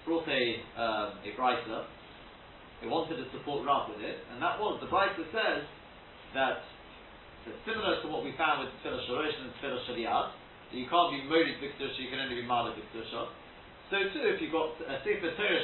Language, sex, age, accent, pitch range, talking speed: English, male, 40-59, British, 135-195 Hz, 190 wpm